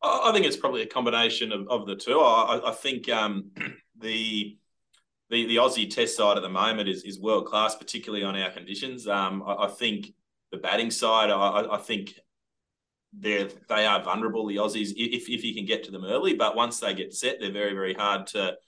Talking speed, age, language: 210 wpm, 20-39, English